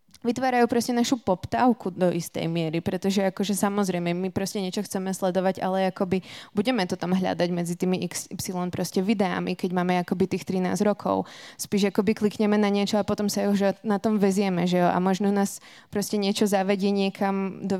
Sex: female